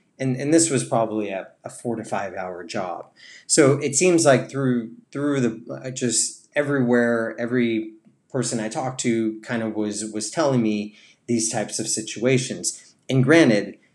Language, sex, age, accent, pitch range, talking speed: English, male, 30-49, American, 110-130 Hz, 170 wpm